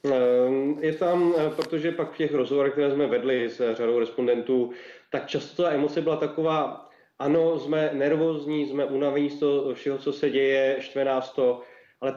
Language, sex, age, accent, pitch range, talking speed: Czech, male, 30-49, native, 130-145 Hz, 160 wpm